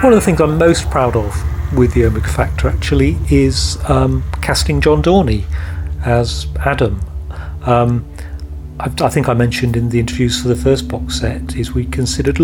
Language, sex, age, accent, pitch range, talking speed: English, male, 40-59, British, 115-145 Hz, 175 wpm